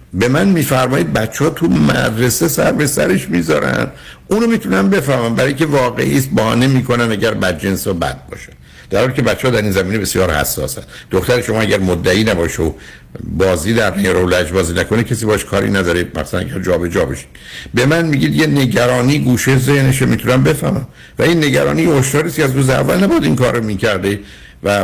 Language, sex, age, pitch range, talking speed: Persian, male, 60-79, 95-125 Hz, 170 wpm